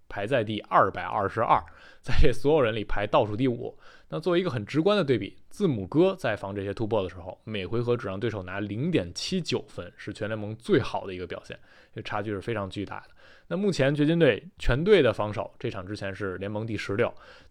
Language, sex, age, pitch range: Chinese, male, 20-39, 100-170 Hz